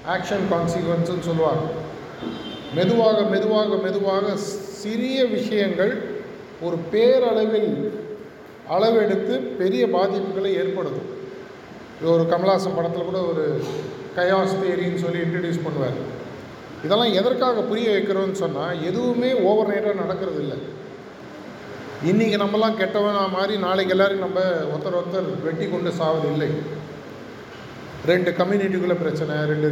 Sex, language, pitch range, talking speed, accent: male, Tamil, 165-205 Hz, 100 wpm, native